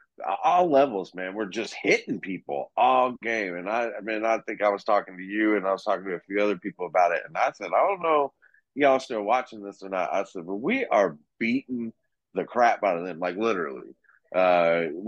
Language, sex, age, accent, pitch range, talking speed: English, male, 30-49, American, 95-115 Hz, 235 wpm